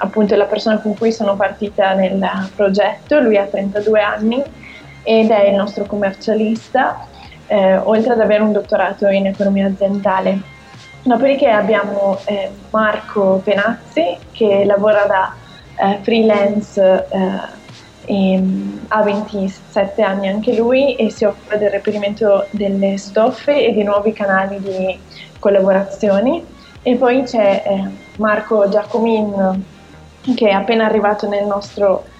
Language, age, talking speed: Italian, 20-39, 125 wpm